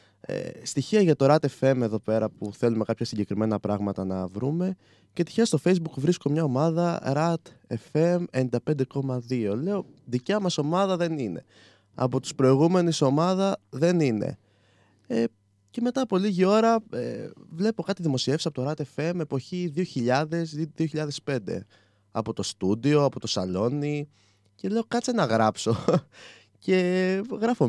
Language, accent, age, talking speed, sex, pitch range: Greek, native, 20-39, 135 wpm, male, 105-165 Hz